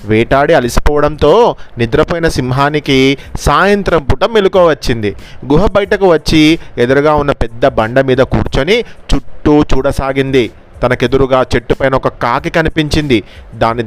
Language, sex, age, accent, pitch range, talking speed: Telugu, male, 30-49, native, 125-155 Hz, 110 wpm